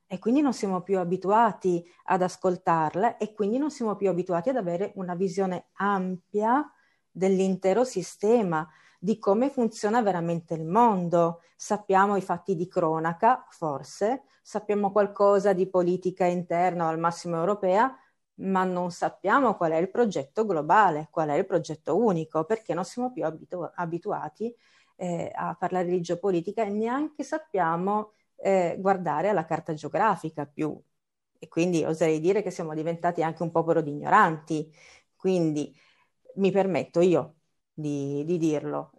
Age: 40-59